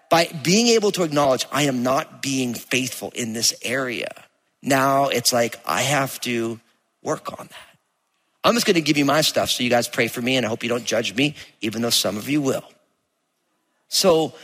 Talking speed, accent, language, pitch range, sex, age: 210 wpm, American, English, 125-155 Hz, male, 40-59